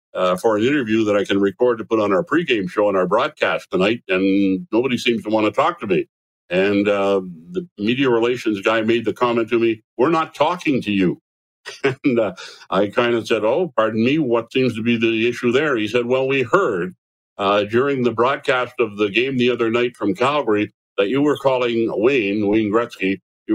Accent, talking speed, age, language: American, 215 wpm, 60-79, English